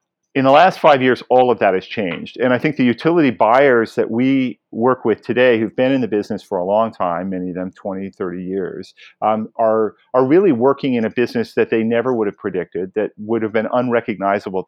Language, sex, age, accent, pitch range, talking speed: English, male, 40-59, American, 100-125 Hz, 225 wpm